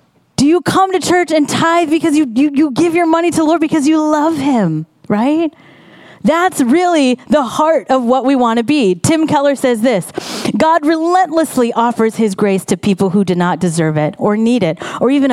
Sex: female